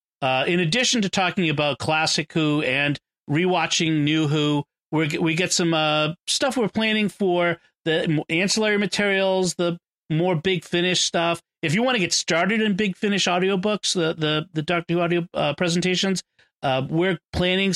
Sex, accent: male, American